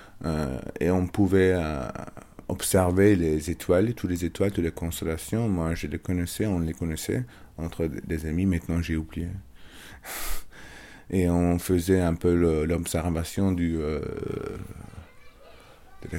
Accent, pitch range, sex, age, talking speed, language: French, 85-100 Hz, male, 30-49, 135 wpm, French